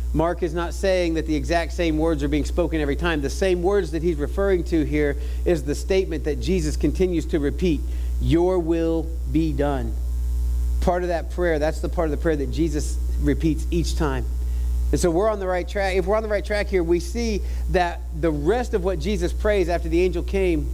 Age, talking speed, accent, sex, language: 40-59, 220 wpm, American, male, English